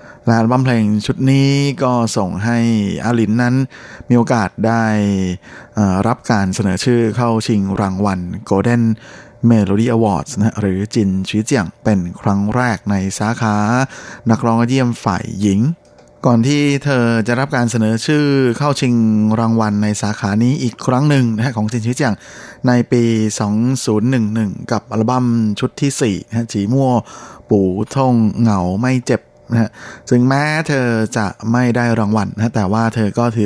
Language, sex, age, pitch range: Thai, male, 20-39, 105-125 Hz